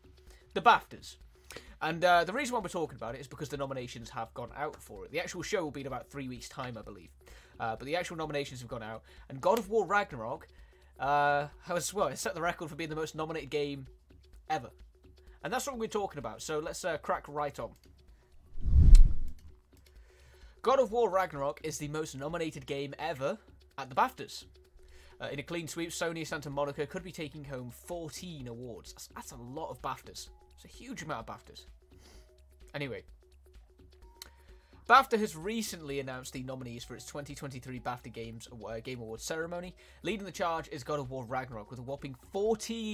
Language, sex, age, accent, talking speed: Italian, male, 20-39, British, 190 wpm